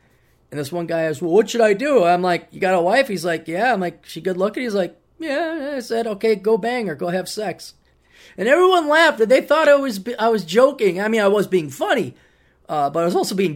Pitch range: 155-225 Hz